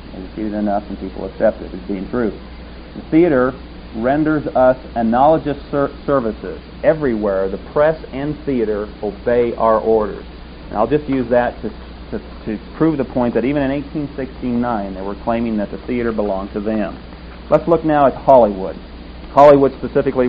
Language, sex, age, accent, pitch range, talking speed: English, male, 40-59, American, 100-130 Hz, 170 wpm